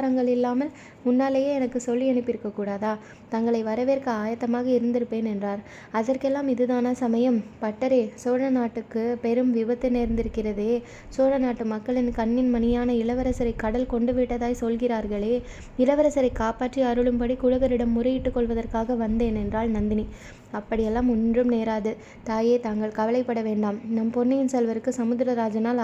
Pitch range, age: 225-250 Hz, 20-39